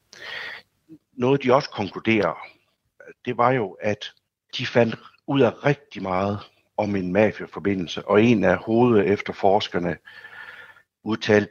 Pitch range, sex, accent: 95-125 Hz, male, native